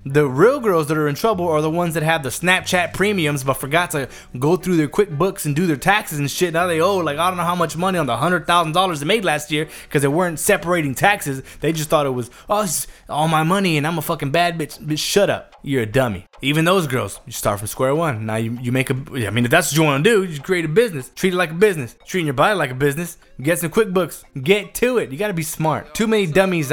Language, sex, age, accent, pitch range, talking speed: English, male, 20-39, American, 135-180 Hz, 270 wpm